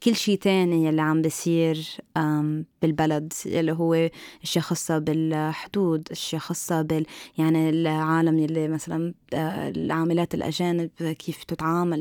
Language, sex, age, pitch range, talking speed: Arabic, female, 20-39, 160-190 Hz, 115 wpm